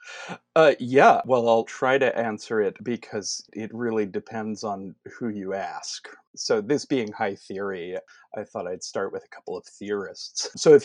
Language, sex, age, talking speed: English, male, 30-49, 175 wpm